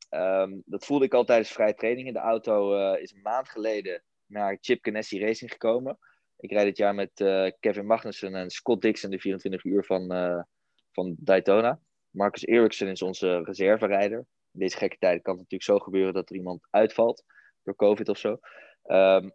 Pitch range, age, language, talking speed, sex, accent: 100-120 Hz, 20-39, Dutch, 190 wpm, male, Dutch